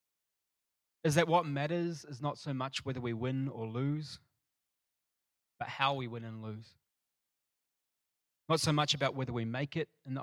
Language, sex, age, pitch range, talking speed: English, male, 20-39, 115-140 Hz, 170 wpm